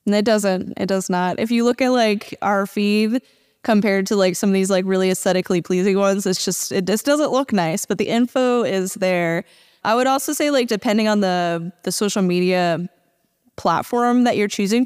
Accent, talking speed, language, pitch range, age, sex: American, 205 wpm, English, 180-215 Hz, 20-39, female